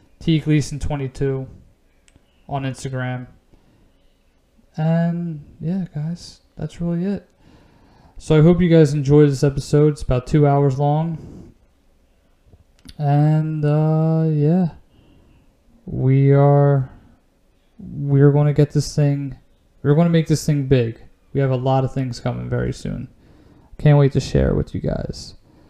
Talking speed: 130 wpm